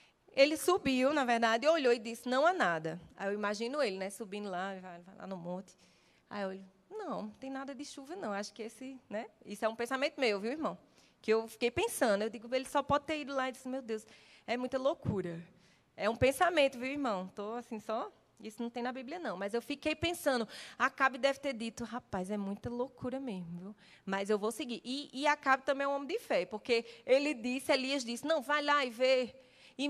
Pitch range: 215-285 Hz